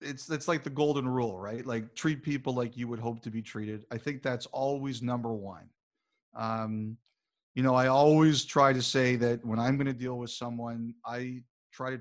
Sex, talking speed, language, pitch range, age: male, 210 wpm, English, 120-145 Hz, 40-59